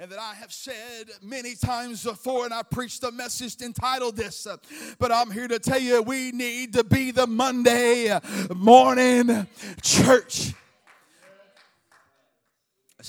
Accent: American